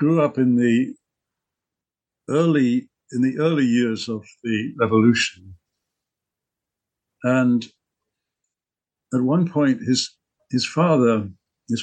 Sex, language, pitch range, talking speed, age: male, English, 115-145 Hz, 100 wpm, 60-79